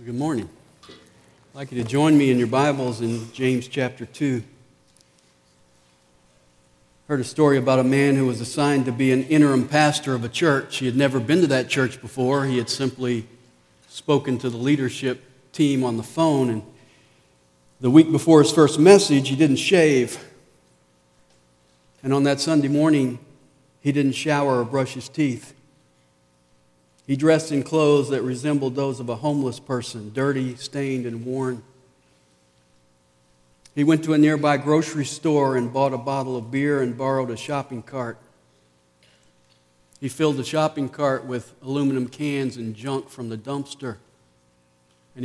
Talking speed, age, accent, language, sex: 160 wpm, 50-69, American, English, male